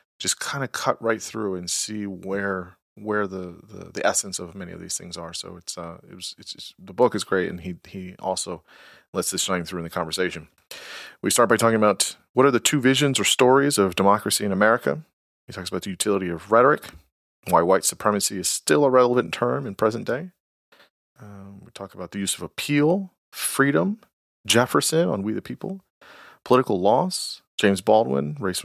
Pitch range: 90-115 Hz